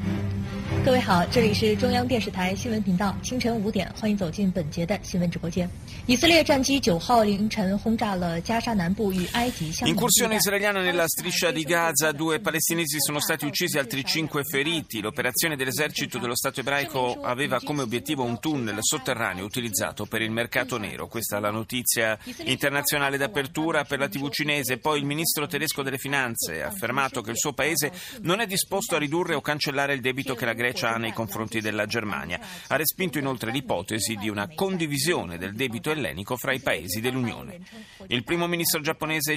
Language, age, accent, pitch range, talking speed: Italian, 30-49, native, 120-165 Hz, 135 wpm